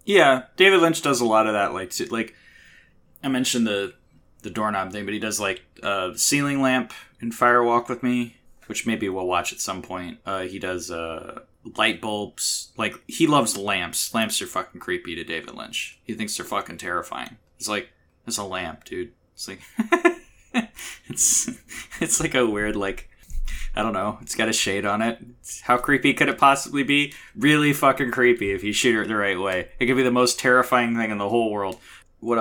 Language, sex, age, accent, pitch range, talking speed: English, male, 20-39, American, 100-135 Hz, 205 wpm